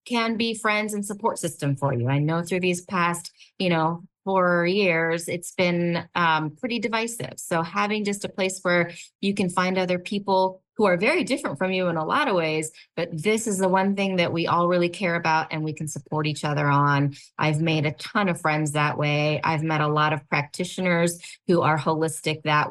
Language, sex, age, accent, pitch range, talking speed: English, female, 20-39, American, 155-185 Hz, 215 wpm